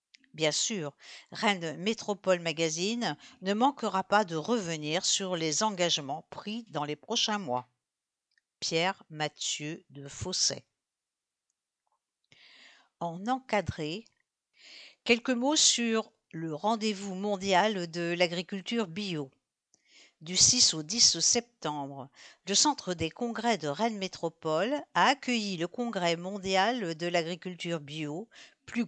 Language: English